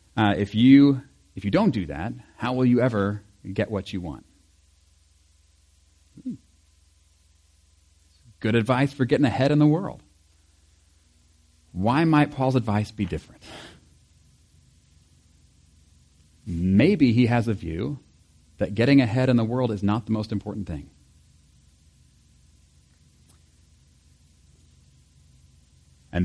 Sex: male